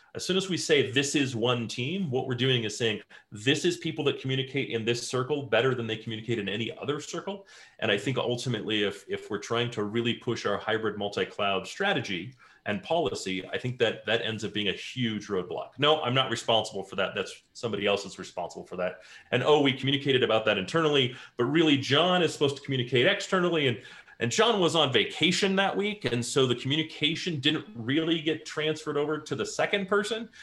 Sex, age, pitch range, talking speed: male, 30-49, 110-150 Hz, 210 wpm